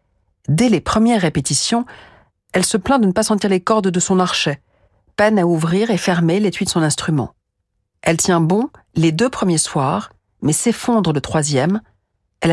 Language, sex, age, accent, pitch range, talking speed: French, female, 50-69, French, 150-210 Hz, 175 wpm